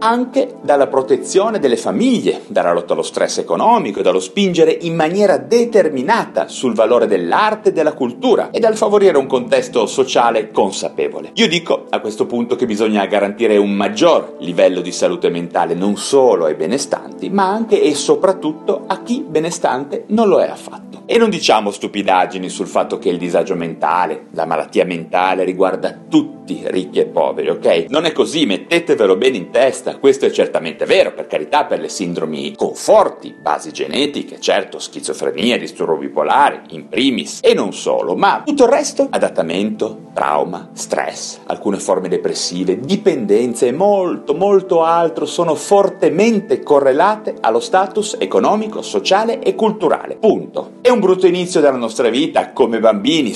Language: Italian